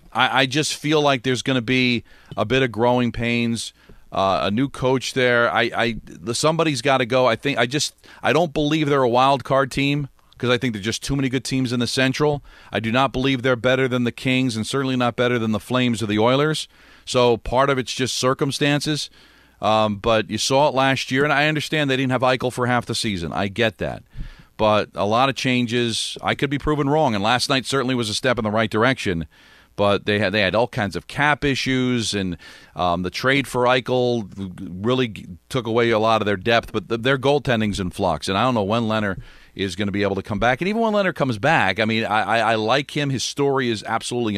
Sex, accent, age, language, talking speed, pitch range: male, American, 40-59, English, 240 wpm, 105-135 Hz